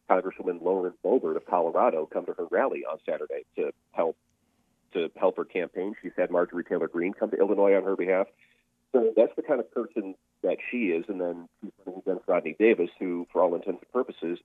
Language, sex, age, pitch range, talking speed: English, male, 40-59, 85-115 Hz, 200 wpm